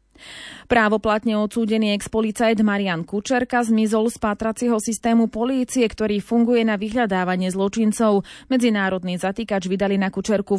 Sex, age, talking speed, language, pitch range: female, 20-39, 115 wpm, Slovak, 200-240 Hz